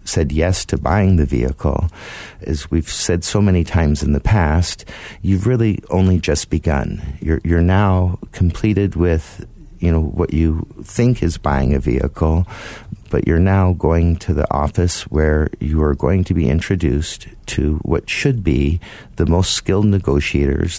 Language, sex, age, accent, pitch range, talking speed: English, male, 50-69, American, 75-95 Hz, 160 wpm